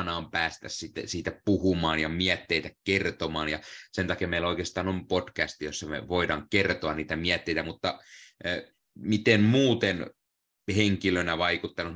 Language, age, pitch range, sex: Finnish, 30-49, 80-95 Hz, male